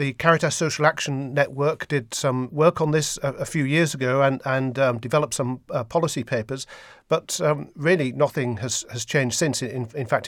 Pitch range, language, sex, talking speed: 125-155 Hz, English, male, 200 wpm